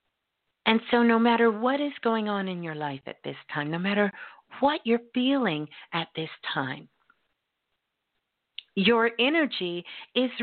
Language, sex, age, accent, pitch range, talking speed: English, female, 50-69, American, 180-235 Hz, 145 wpm